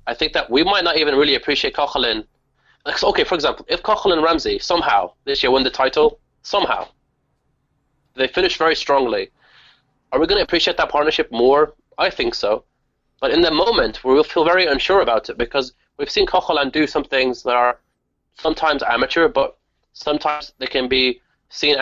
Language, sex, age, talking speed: English, male, 20-39, 190 wpm